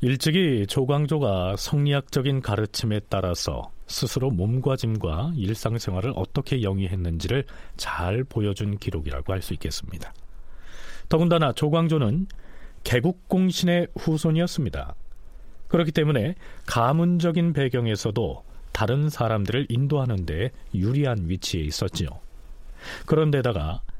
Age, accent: 40-59, native